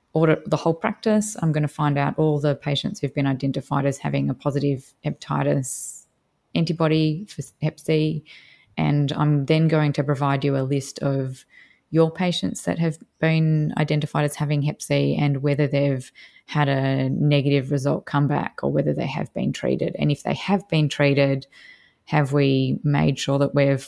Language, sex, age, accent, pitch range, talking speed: English, female, 20-39, Australian, 140-155 Hz, 175 wpm